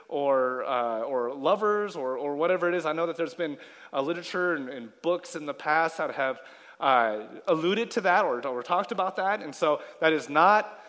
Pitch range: 150-190 Hz